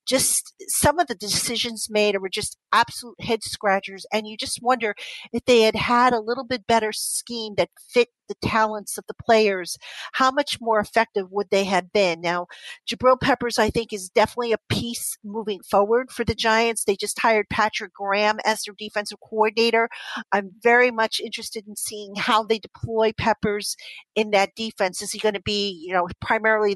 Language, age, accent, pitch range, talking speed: English, 50-69, American, 200-230 Hz, 185 wpm